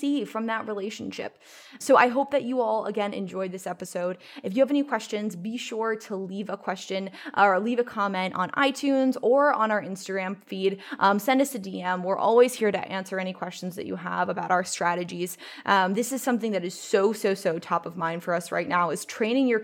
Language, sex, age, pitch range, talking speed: English, female, 20-39, 190-245 Hz, 220 wpm